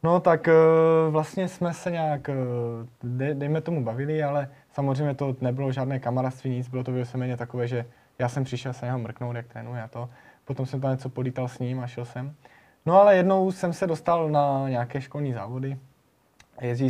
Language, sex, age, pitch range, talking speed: Slovak, male, 20-39, 130-165 Hz, 185 wpm